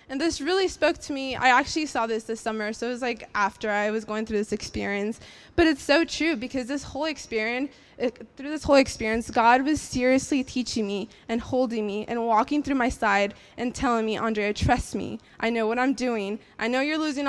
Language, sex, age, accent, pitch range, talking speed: English, female, 20-39, American, 220-275 Hz, 220 wpm